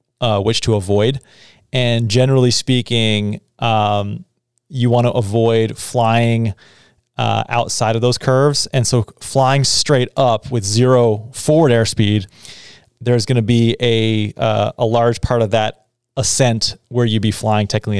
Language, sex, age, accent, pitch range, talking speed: English, male, 30-49, American, 110-125 Hz, 145 wpm